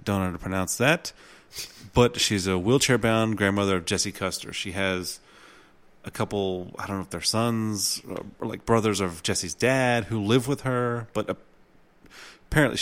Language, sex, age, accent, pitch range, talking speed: English, male, 30-49, American, 95-130 Hz, 160 wpm